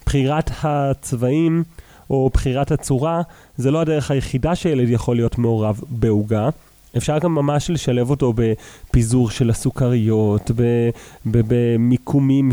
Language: English